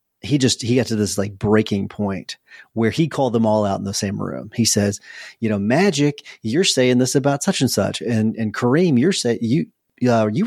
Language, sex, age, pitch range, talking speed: English, male, 30-49, 105-130 Hz, 225 wpm